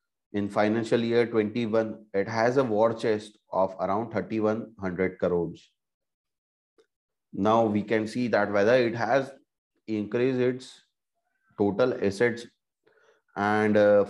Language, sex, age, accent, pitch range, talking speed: English, male, 30-49, Indian, 105-125 Hz, 115 wpm